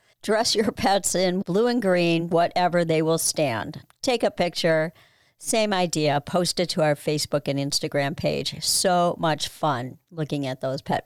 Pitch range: 150-190 Hz